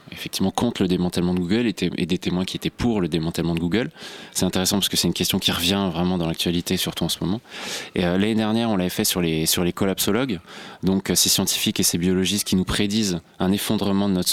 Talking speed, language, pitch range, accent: 235 wpm, French, 90-105 Hz, French